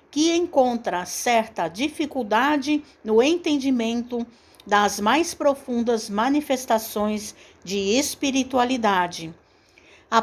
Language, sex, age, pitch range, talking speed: Portuguese, female, 60-79, 210-275 Hz, 75 wpm